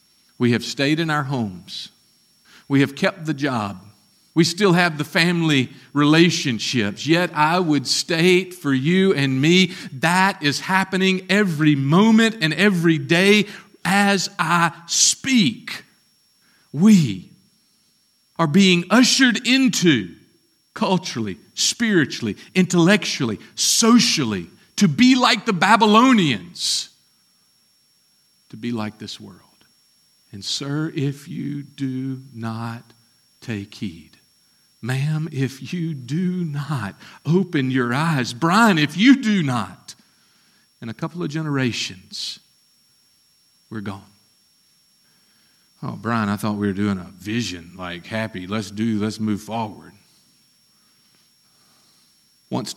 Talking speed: 115 wpm